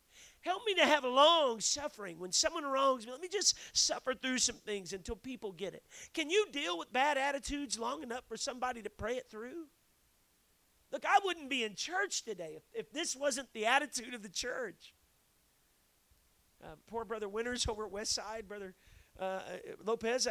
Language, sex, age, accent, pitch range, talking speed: English, male, 40-59, American, 210-275 Hz, 185 wpm